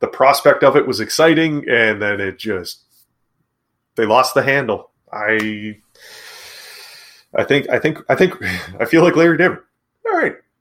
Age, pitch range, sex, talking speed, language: 30-49, 110-165 Hz, male, 155 wpm, English